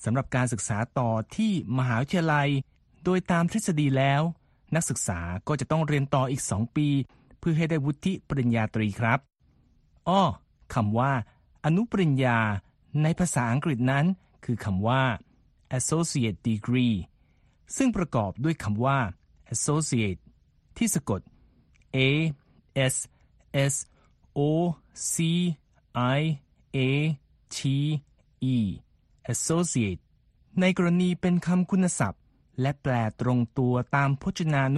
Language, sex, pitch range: Thai, male, 115-155 Hz